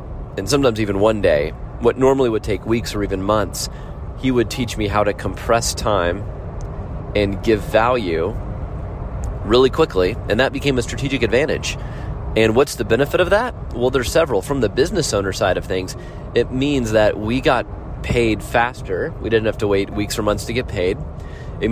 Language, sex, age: English, male, 30-49